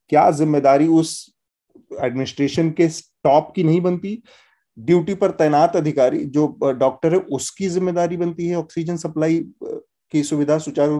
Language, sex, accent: Hindi, male, native